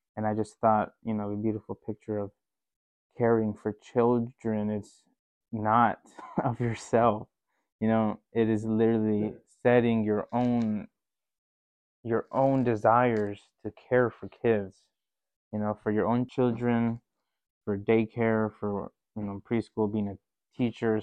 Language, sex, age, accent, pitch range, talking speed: English, male, 20-39, American, 105-115 Hz, 135 wpm